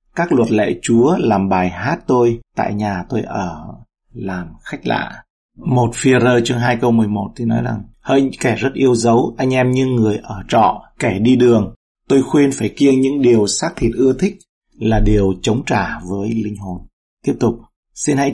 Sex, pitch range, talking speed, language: male, 110-125 Hz, 195 wpm, Vietnamese